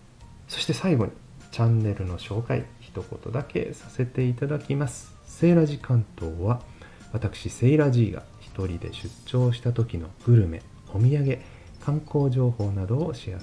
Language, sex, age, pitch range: Japanese, male, 40-59, 95-130 Hz